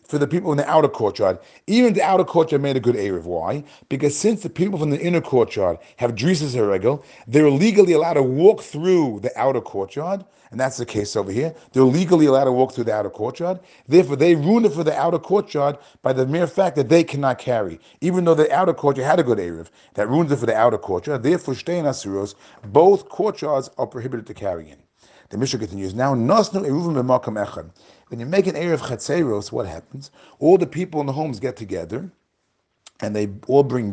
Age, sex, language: 40-59, male, English